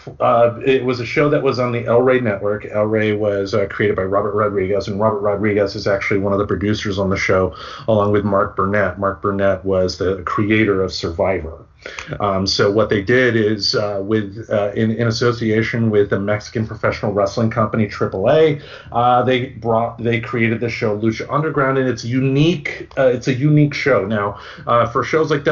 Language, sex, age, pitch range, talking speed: English, male, 40-59, 100-120 Hz, 200 wpm